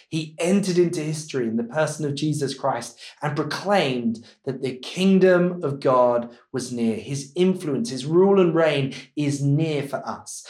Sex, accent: male, British